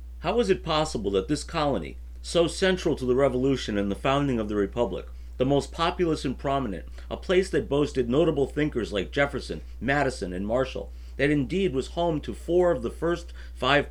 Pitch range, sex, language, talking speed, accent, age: 100-150 Hz, male, English, 190 wpm, American, 50-69